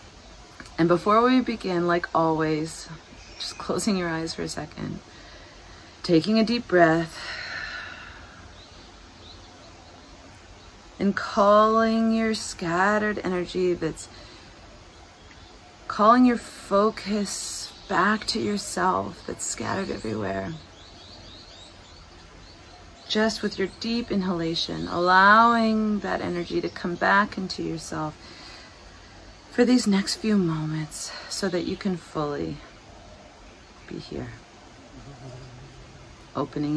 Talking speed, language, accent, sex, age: 95 wpm, English, American, female, 30-49